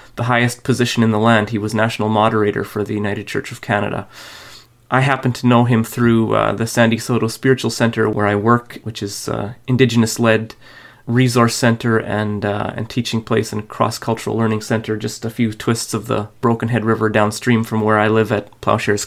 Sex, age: male, 30-49